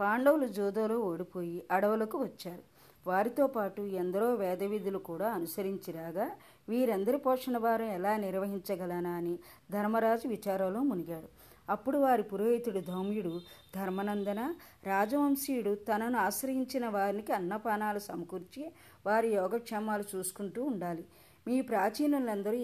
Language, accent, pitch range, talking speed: Telugu, native, 190-235 Hz, 100 wpm